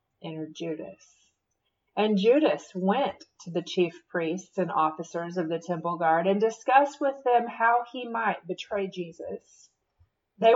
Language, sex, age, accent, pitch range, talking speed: English, female, 30-49, American, 175-225 Hz, 140 wpm